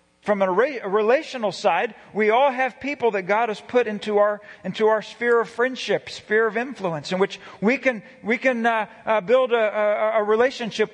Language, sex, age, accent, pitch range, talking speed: English, male, 40-59, American, 185-235 Hz, 190 wpm